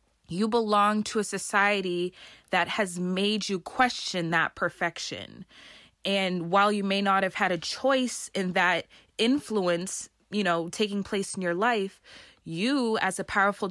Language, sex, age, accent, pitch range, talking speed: English, female, 20-39, American, 180-215 Hz, 155 wpm